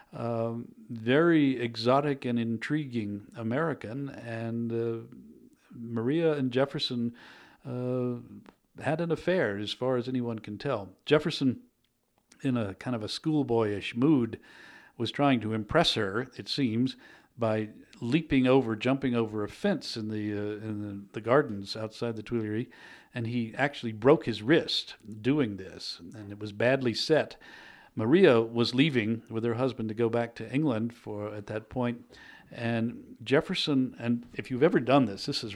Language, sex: English, male